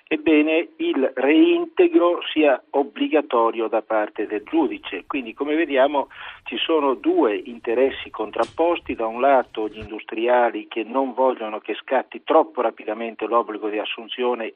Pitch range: 115-155 Hz